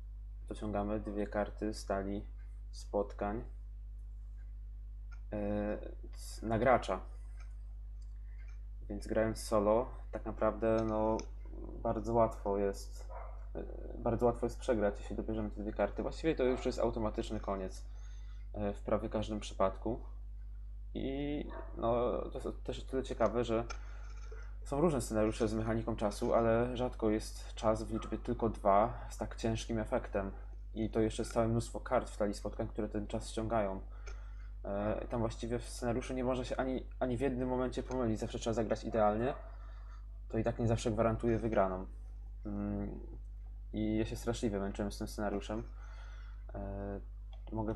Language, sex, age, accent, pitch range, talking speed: Polish, male, 20-39, native, 100-115 Hz, 135 wpm